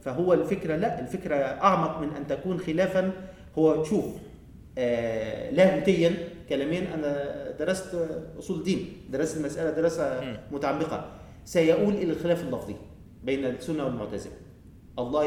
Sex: male